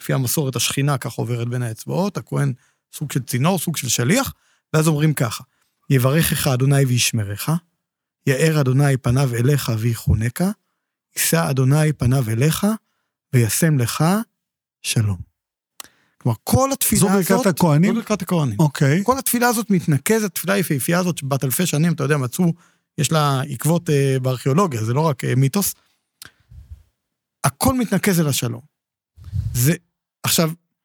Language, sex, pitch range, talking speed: Hebrew, male, 135-190 Hz, 125 wpm